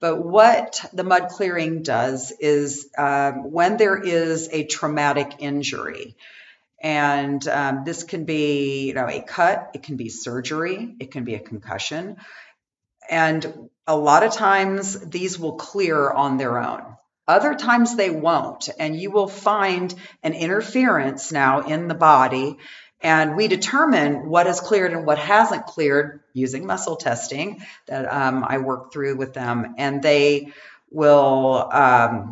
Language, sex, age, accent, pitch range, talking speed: English, female, 40-59, American, 140-175 Hz, 145 wpm